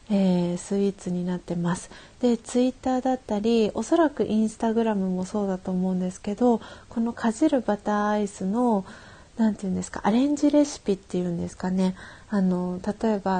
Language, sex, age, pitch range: Japanese, female, 40-59, 185-215 Hz